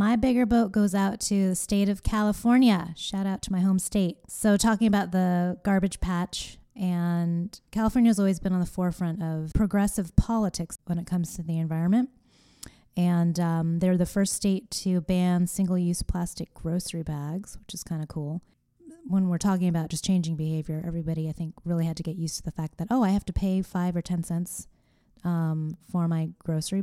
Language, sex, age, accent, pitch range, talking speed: English, female, 20-39, American, 165-195 Hz, 195 wpm